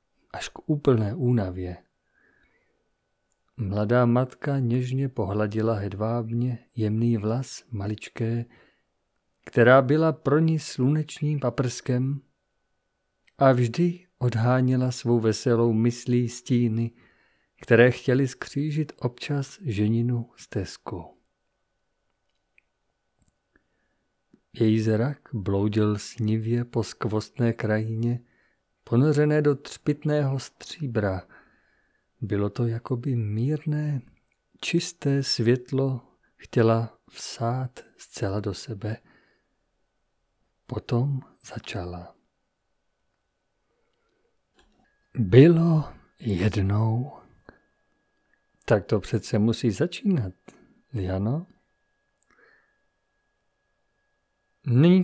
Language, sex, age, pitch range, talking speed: Czech, male, 50-69, 110-140 Hz, 70 wpm